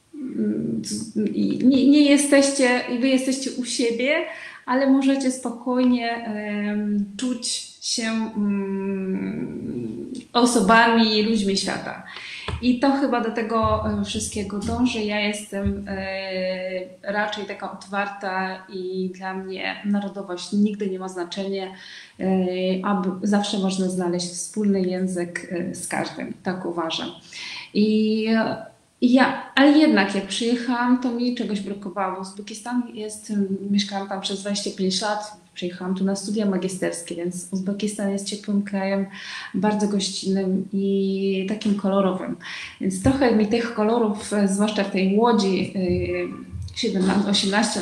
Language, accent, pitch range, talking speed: English, Polish, 190-235 Hz, 115 wpm